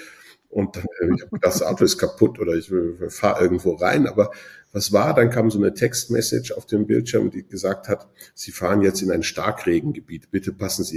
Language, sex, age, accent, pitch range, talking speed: German, male, 50-69, German, 90-120 Hz, 195 wpm